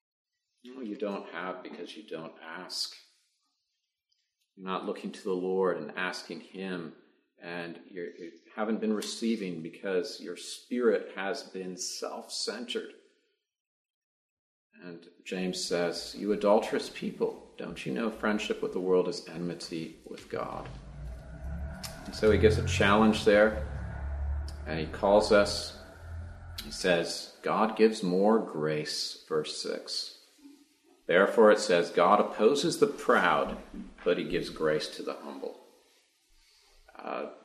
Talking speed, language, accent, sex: 130 wpm, English, American, male